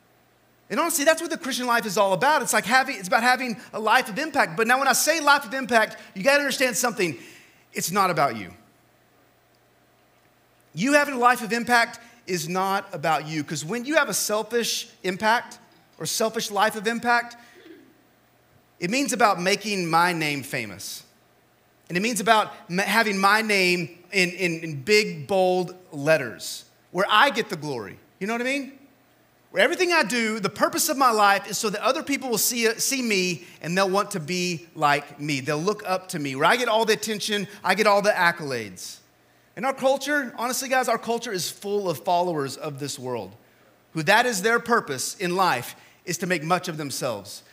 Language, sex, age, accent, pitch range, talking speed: English, male, 30-49, American, 160-235 Hz, 195 wpm